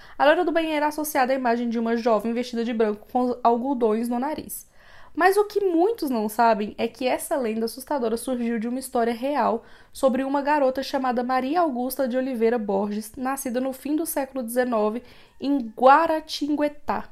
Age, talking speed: 20-39, 180 wpm